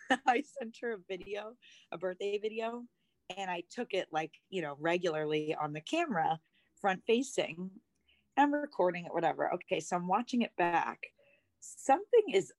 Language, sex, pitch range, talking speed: English, female, 175-235 Hz, 155 wpm